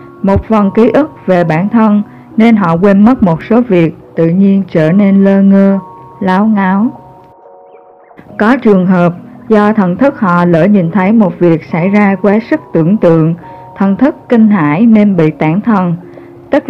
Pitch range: 175-215 Hz